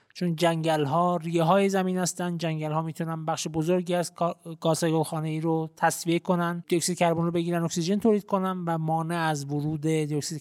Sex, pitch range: male, 155-185 Hz